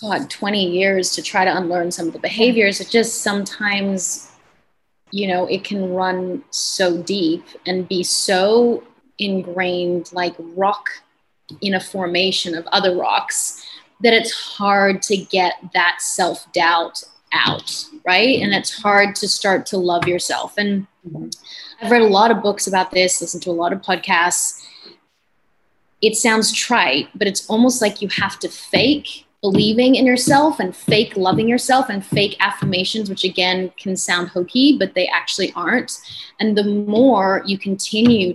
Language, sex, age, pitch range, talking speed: English, female, 20-39, 180-220 Hz, 160 wpm